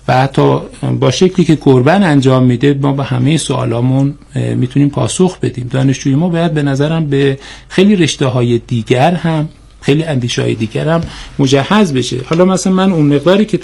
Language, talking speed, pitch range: Persian, 180 wpm, 130-170 Hz